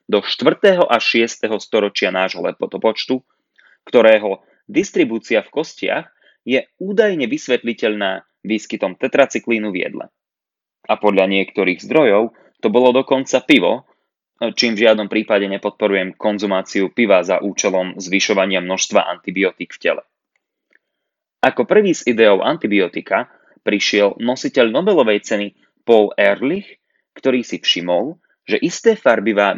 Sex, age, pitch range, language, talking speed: male, 20-39, 100-125 Hz, Slovak, 120 wpm